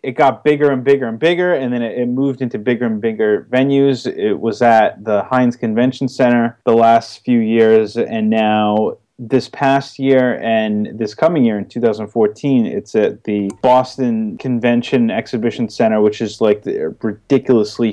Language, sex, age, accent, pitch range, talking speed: English, male, 30-49, American, 115-155 Hz, 165 wpm